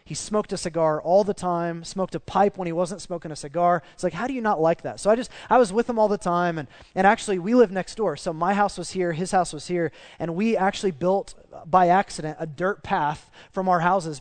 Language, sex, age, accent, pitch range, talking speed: English, male, 20-39, American, 160-200 Hz, 260 wpm